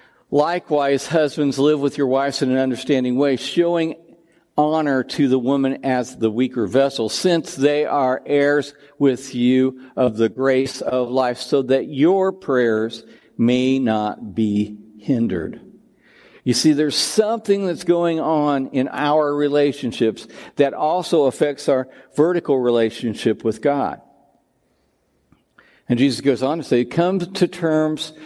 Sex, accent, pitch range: male, American, 120-150 Hz